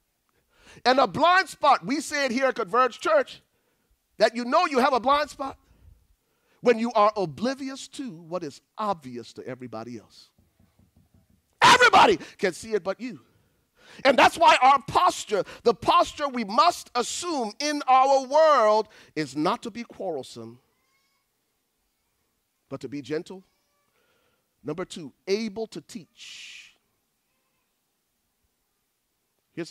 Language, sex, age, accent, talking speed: English, male, 40-59, American, 130 wpm